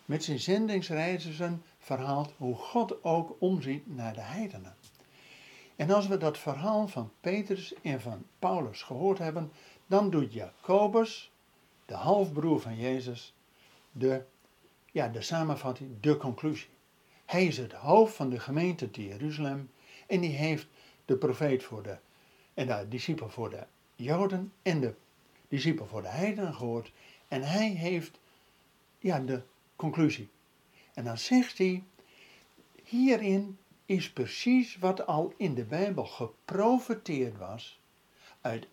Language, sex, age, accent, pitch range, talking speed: Dutch, male, 60-79, Dutch, 130-195 Hz, 135 wpm